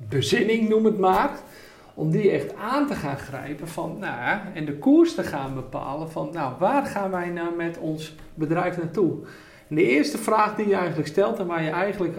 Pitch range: 145-185 Hz